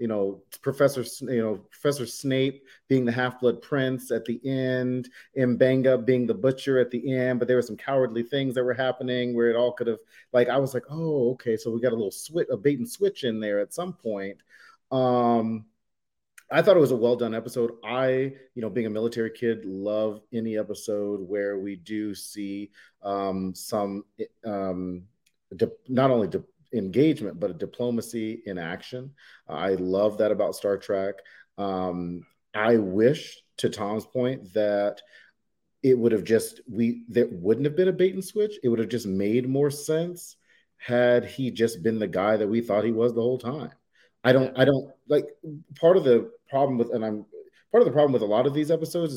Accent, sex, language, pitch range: American, male, English, 110-130 Hz